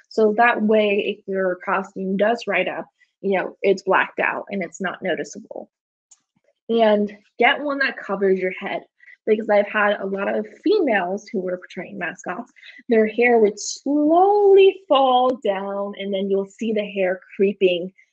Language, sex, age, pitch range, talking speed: English, female, 20-39, 195-260 Hz, 160 wpm